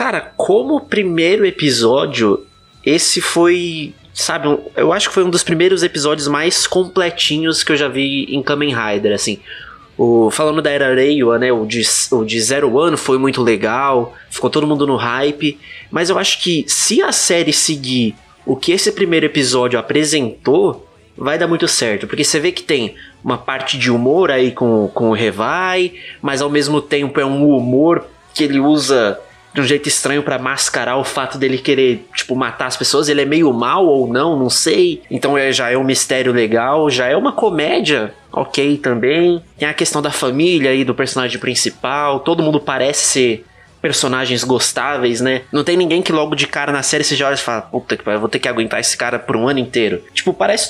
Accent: Brazilian